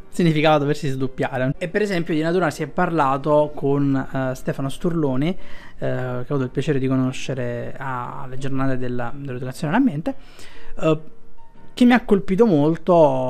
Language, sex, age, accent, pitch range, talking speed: Italian, male, 20-39, native, 135-165 Hz, 160 wpm